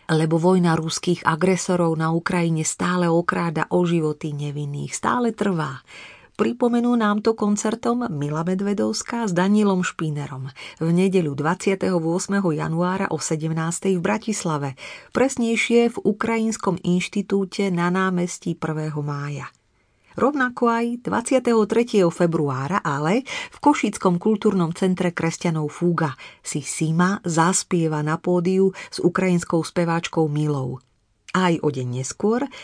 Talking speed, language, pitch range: 115 wpm, Slovak, 155-200 Hz